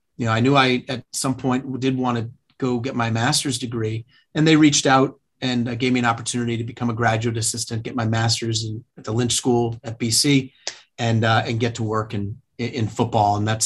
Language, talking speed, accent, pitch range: English, 230 wpm, American, 115-130 Hz